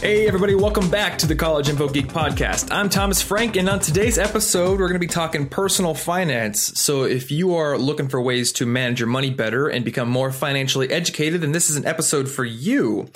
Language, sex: English, male